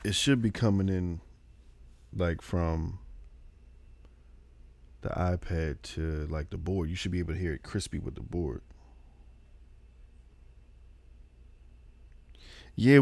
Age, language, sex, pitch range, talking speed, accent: 20-39, English, male, 65-110 Hz, 115 wpm, American